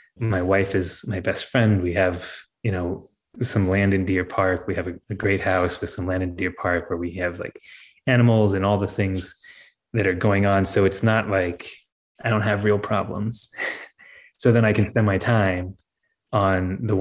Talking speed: 205 wpm